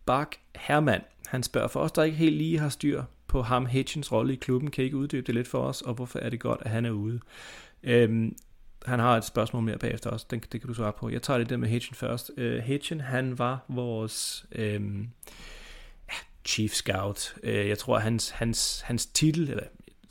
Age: 30-49